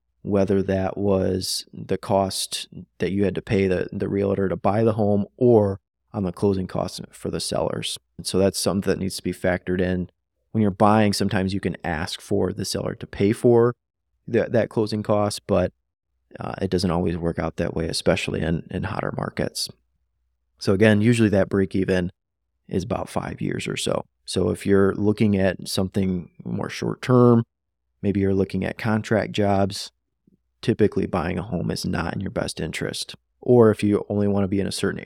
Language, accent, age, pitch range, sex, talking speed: English, American, 30-49, 90-105 Hz, male, 185 wpm